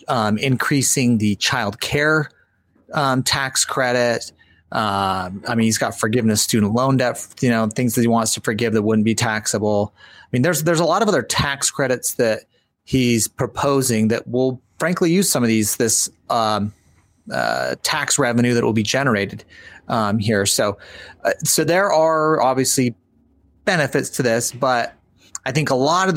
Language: English